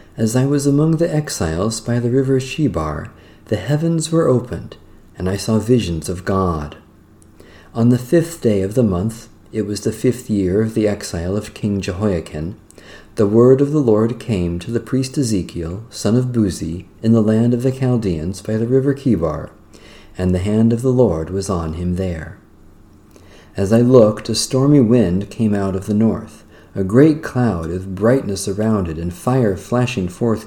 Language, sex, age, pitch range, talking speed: English, male, 40-59, 100-125 Hz, 185 wpm